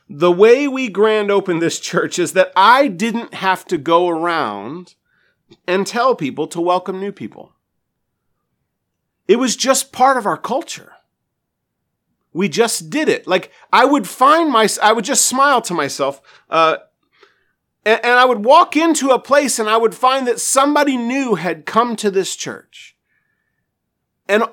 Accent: American